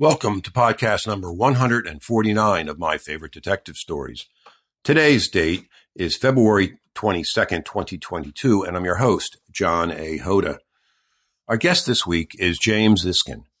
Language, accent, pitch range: English, American, 90-110 Hz